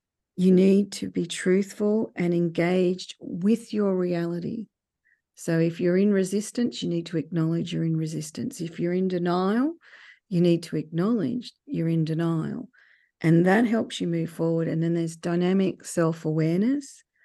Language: English